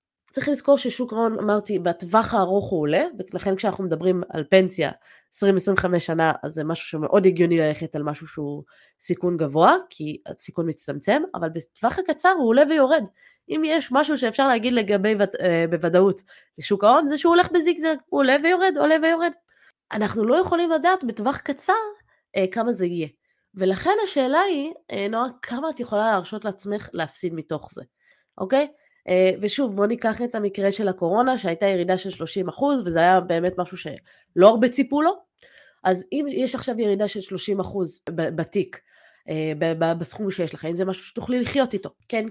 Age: 20-39